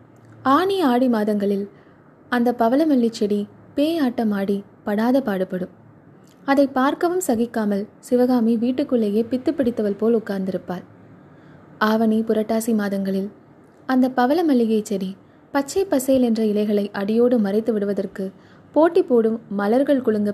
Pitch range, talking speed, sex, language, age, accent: 200-260 Hz, 105 wpm, female, Tamil, 20-39, native